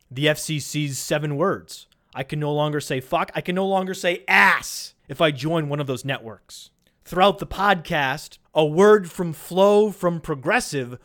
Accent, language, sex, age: American, English, male, 30-49